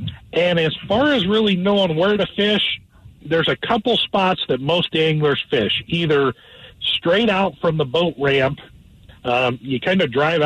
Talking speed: 165 wpm